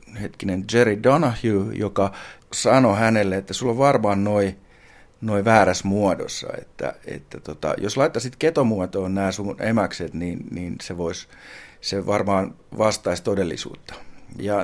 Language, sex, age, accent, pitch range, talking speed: Finnish, male, 50-69, native, 95-120 Hz, 130 wpm